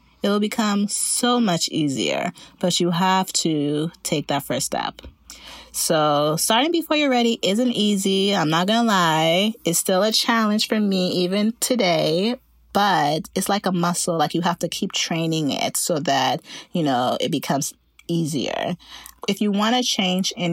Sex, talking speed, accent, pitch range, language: female, 170 wpm, American, 150-200 Hz, English